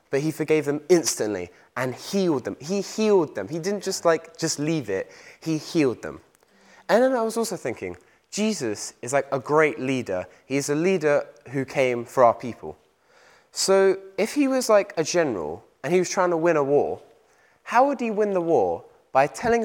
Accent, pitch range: British, 130-190 Hz